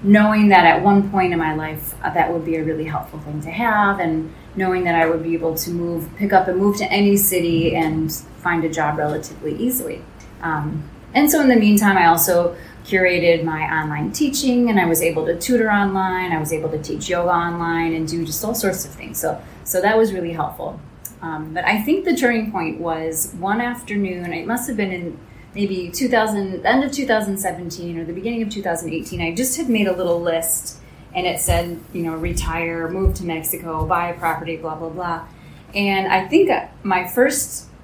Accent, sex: American, female